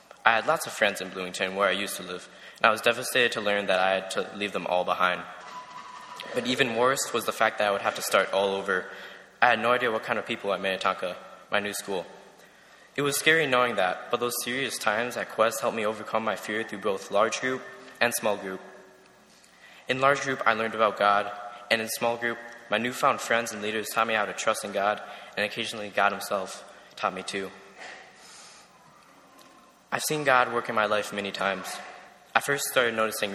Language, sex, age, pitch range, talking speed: English, male, 10-29, 100-120 Hz, 215 wpm